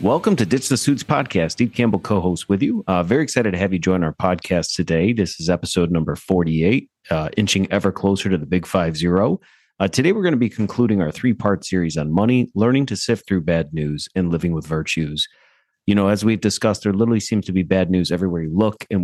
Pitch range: 85-110 Hz